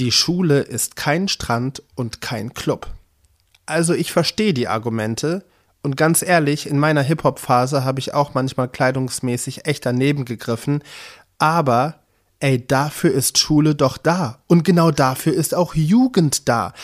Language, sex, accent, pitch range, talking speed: German, male, German, 110-155 Hz, 145 wpm